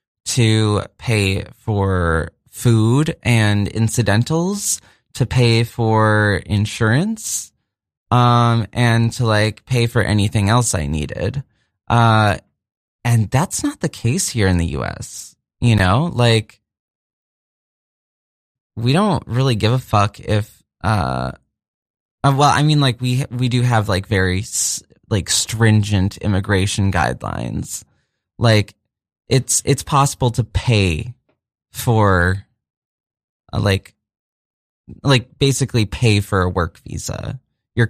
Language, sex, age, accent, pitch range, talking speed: English, male, 20-39, American, 100-120 Hz, 115 wpm